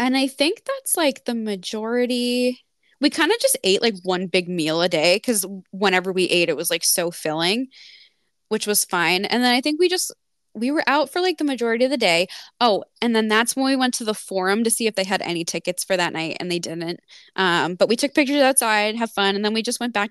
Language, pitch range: English, 190-250 Hz